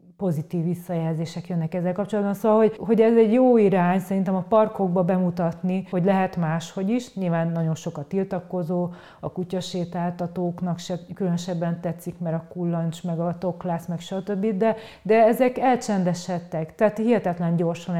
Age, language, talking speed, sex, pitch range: 30-49, Hungarian, 145 wpm, female, 170-195 Hz